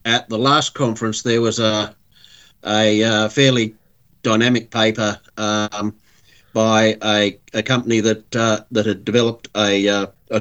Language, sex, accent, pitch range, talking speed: English, male, Australian, 105-115 Hz, 145 wpm